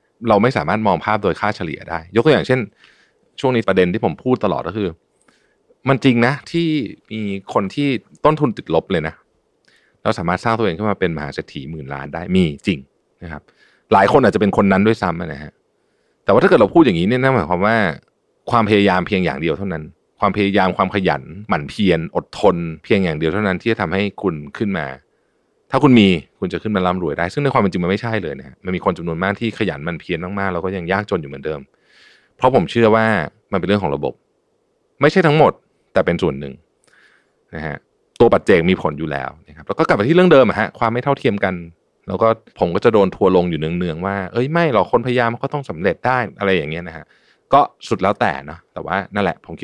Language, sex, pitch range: Thai, male, 85-115 Hz